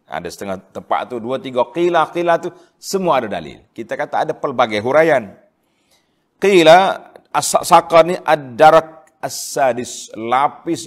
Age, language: 40-59, Malay